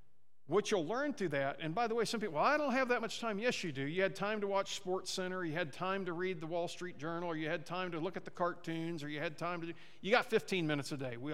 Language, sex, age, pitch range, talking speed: English, male, 50-69, 140-195 Hz, 310 wpm